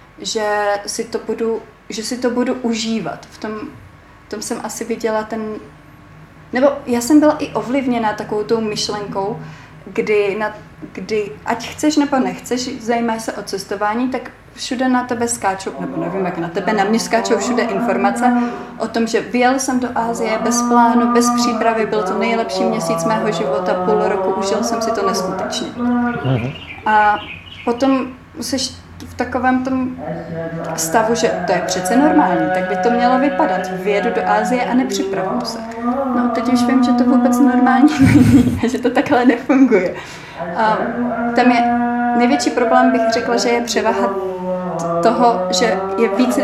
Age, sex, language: 30-49, female, Czech